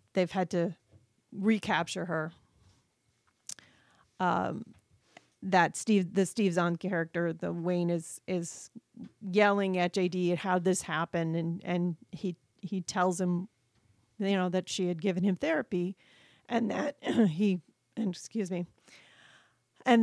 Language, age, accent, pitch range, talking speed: English, 40-59, American, 170-195 Hz, 130 wpm